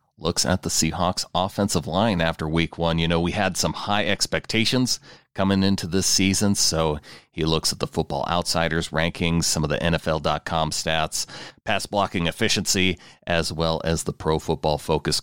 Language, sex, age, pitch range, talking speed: English, male, 40-59, 80-105 Hz, 170 wpm